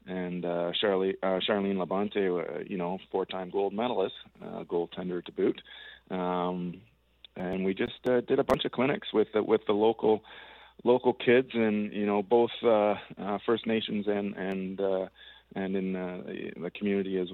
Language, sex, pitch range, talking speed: English, male, 85-100 Hz, 175 wpm